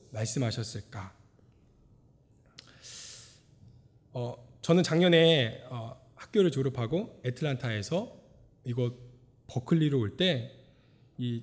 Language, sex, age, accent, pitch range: Korean, male, 20-39, native, 125-185 Hz